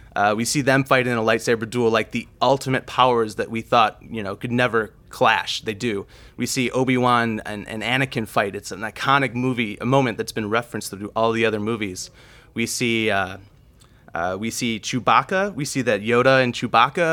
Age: 30-49